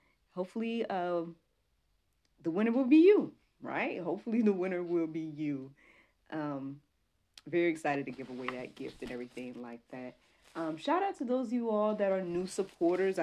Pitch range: 135-170 Hz